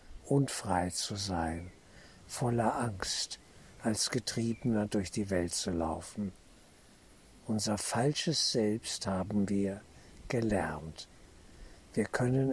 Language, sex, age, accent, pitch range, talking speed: German, male, 60-79, German, 90-115 Hz, 95 wpm